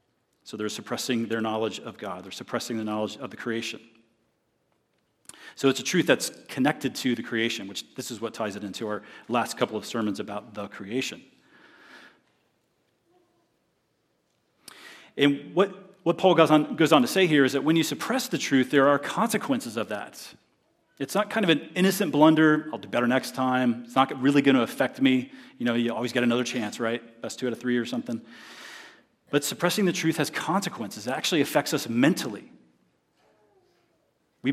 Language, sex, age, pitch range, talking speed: English, male, 40-59, 115-160 Hz, 185 wpm